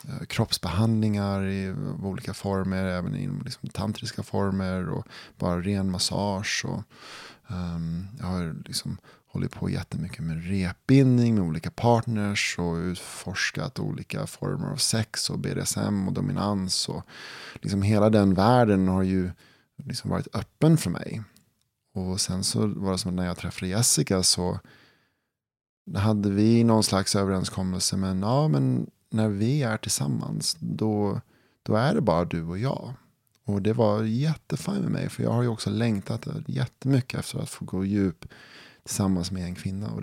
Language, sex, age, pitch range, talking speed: English, male, 20-39, 95-120 Hz, 155 wpm